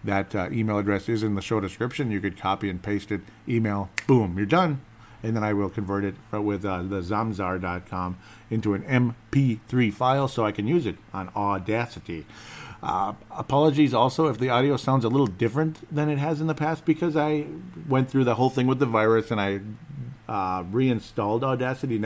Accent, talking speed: American, 195 wpm